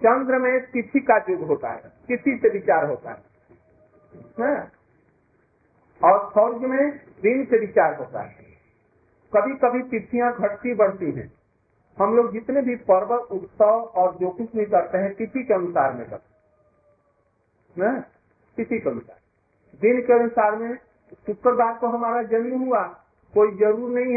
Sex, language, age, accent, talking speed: male, Hindi, 50-69, native, 150 wpm